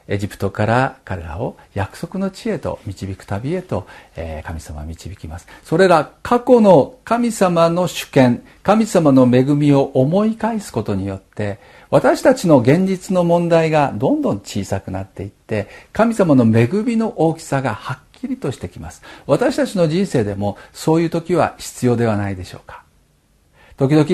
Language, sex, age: Japanese, male, 50-69